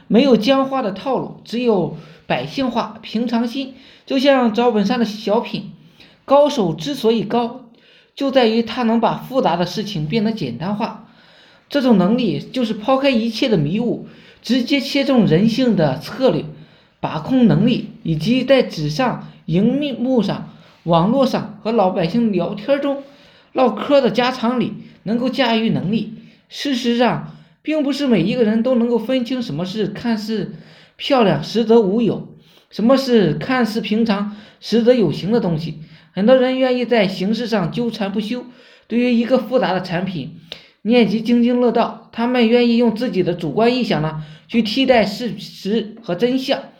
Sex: male